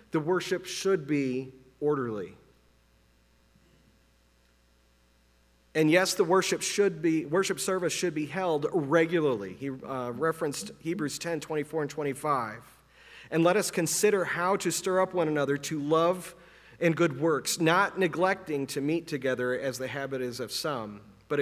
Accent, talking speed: American, 145 wpm